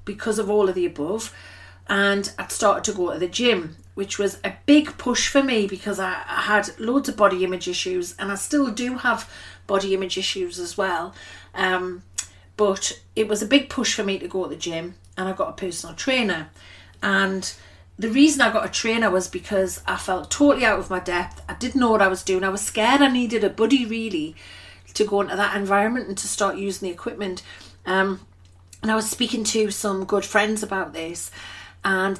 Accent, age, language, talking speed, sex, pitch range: British, 40-59, English, 210 wpm, female, 185-225 Hz